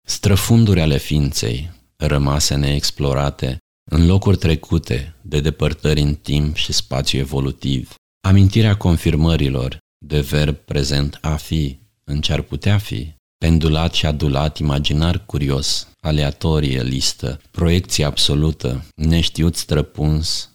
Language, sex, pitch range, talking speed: Romanian, male, 70-85 Hz, 110 wpm